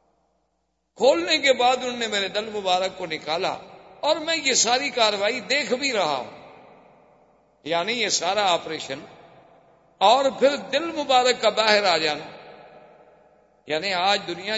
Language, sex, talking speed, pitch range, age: Urdu, male, 140 wpm, 170-220 Hz, 50-69